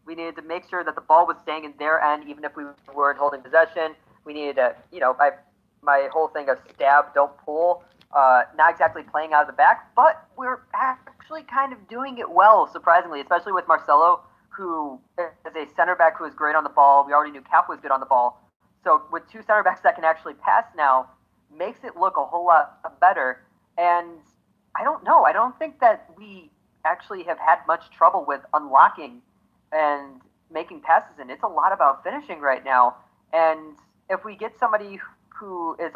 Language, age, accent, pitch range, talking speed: English, 30-49, American, 150-195 Hz, 205 wpm